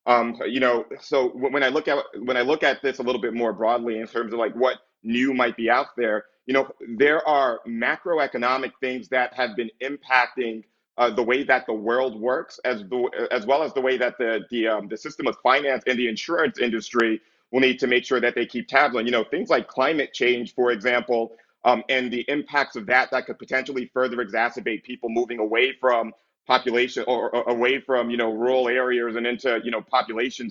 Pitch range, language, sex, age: 115-130 Hz, English, male, 30-49